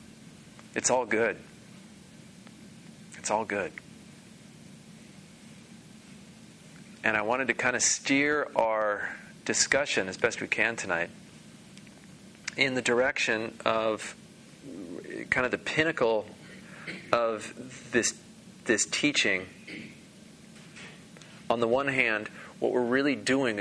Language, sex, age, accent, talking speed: English, male, 30-49, American, 100 wpm